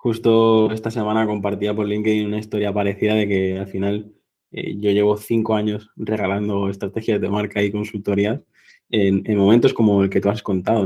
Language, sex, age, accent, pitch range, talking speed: Spanish, male, 20-39, Spanish, 100-110 Hz, 180 wpm